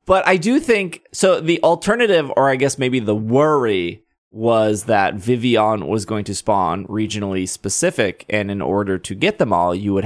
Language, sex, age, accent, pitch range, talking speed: English, male, 20-39, American, 100-135 Hz, 185 wpm